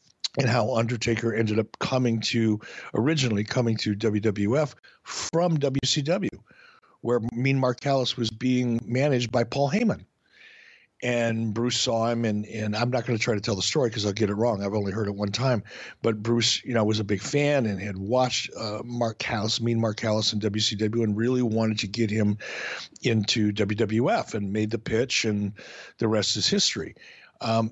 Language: English